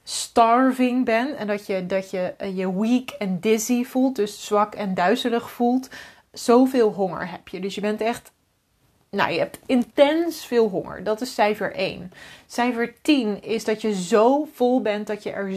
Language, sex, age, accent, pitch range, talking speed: Dutch, female, 30-49, Dutch, 205-250 Hz, 180 wpm